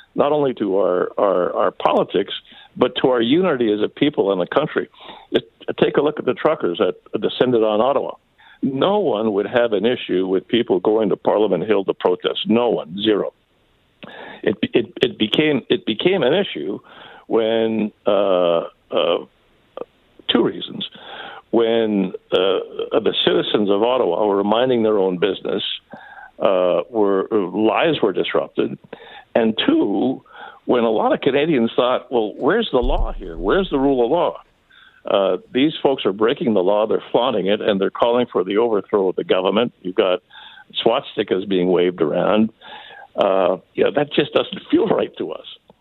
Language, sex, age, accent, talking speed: English, male, 60-79, American, 170 wpm